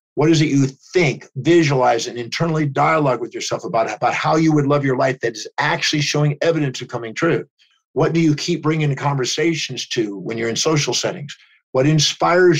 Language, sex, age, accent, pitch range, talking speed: English, male, 50-69, American, 130-165 Hz, 195 wpm